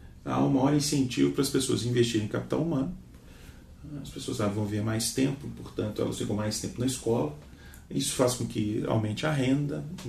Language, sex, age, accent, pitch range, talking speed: Portuguese, male, 40-59, Brazilian, 105-135 Hz, 200 wpm